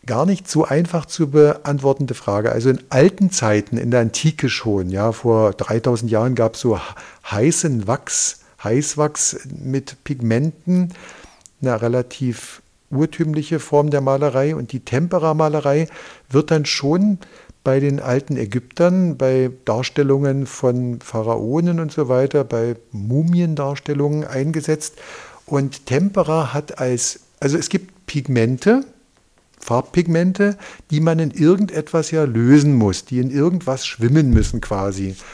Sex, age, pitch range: male, 50-69, 125-160 Hz